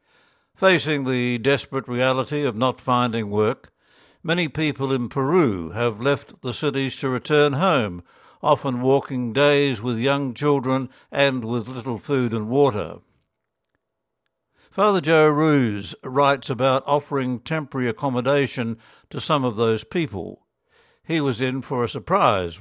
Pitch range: 120-145 Hz